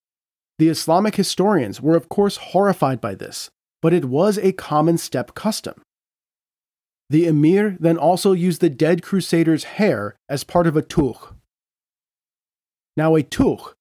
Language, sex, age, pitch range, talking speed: English, male, 30-49, 150-180 Hz, 145 wpm